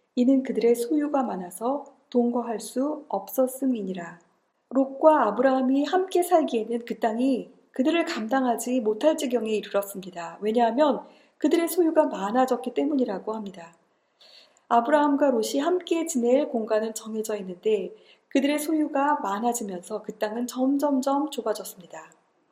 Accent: native